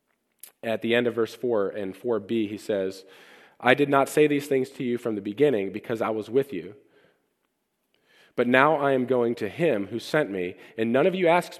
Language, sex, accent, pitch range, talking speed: English, male, American, 110-135 Hz, 210 wpm